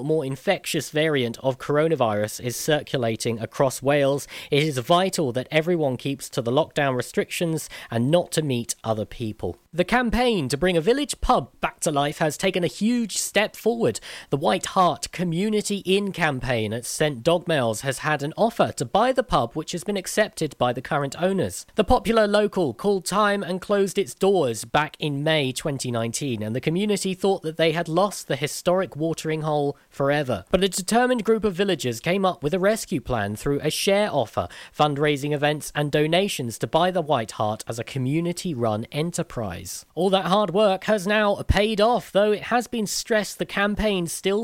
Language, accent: English, British